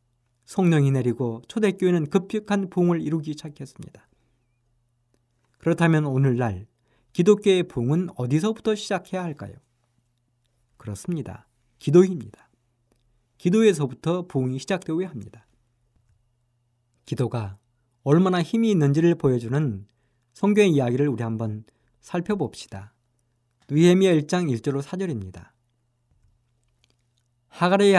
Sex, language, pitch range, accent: male, Korean, 120-175 Hz, native